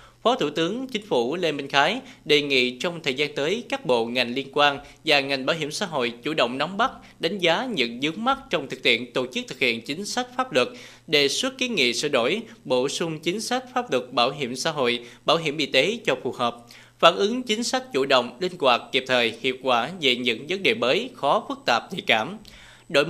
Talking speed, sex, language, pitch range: 235 wpm, male, Vietnamese, 125-185 Hz